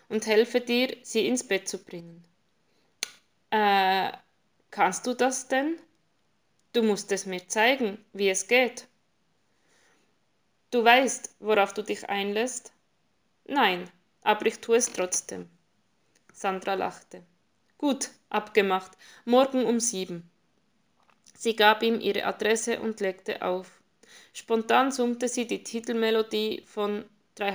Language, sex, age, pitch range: German, female, 20-39, 195-230 Hz